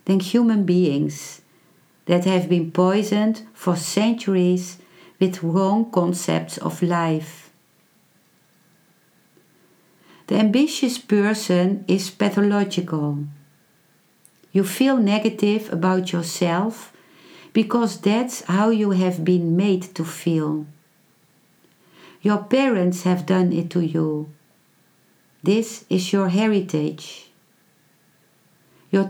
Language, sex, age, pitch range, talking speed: English, female, 50-69, 170-210 Hz, 90 wpm